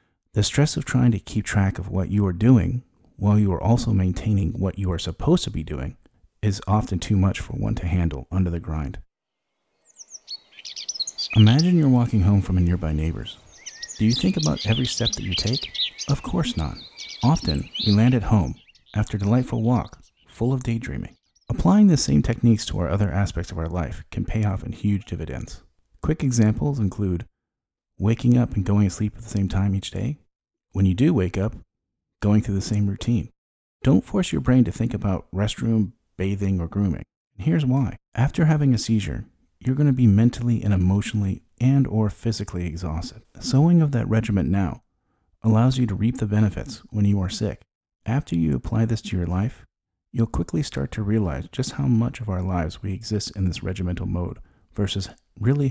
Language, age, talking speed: English, 40-59, 190 wpm